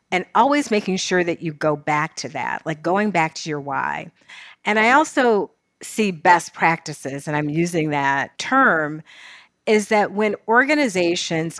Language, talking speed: English, 160 wpm